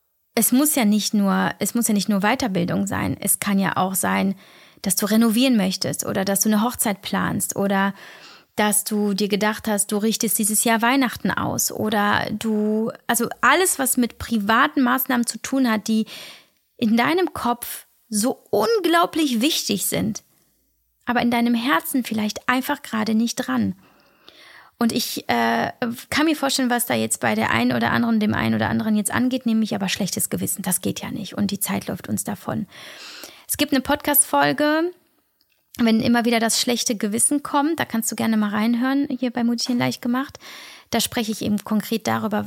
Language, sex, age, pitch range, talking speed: German, female, 20-39, 205-245 Hz, 180 wpm